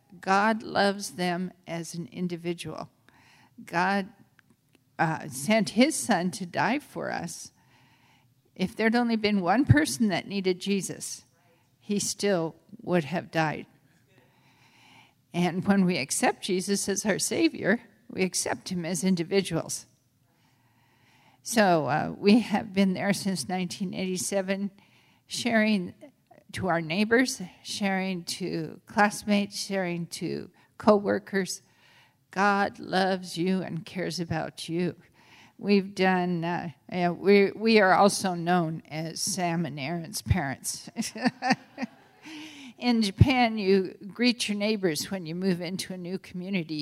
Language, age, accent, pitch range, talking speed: English, 50-69, American, 165-200 Hz, 120 wpm